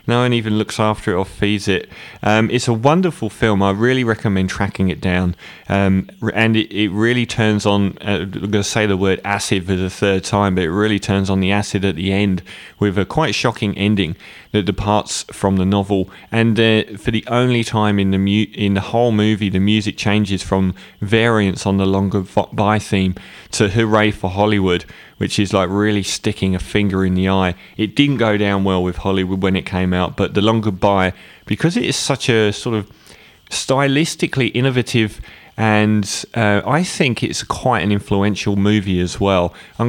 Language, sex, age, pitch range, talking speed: English, male, 20-39, 95-110 Hz, 200 wpm